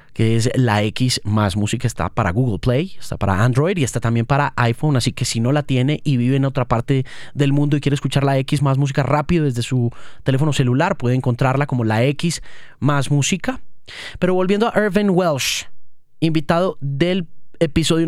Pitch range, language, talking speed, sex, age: 125-155 Hz, Spanish, 195 wpm, male, 30-49